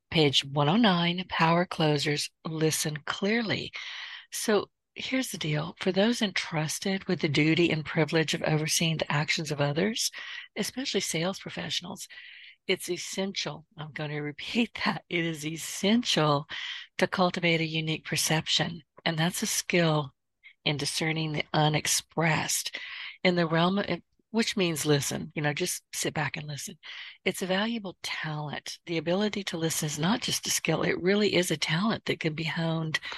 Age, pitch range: 50-69, 155-195 Hz